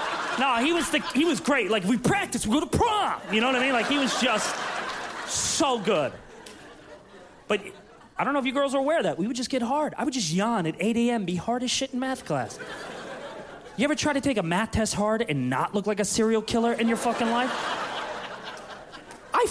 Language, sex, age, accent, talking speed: English, male, 30-49, American, 235 wpm